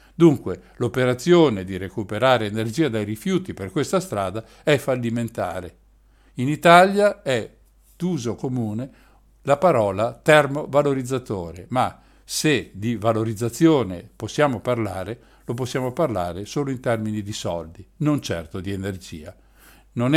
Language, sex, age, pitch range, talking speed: Italian, male, 50-69, 105-150 Hz, 115 wpm